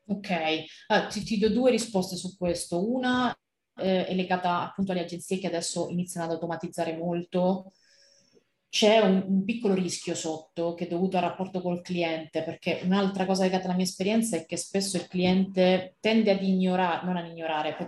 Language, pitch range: Italian, 160-185 Hz